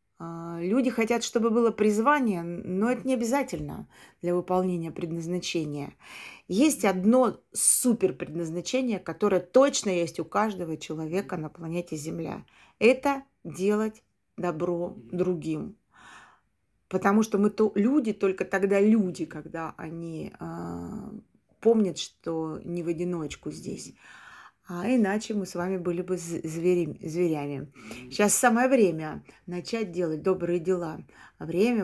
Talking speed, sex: 110 wpm, female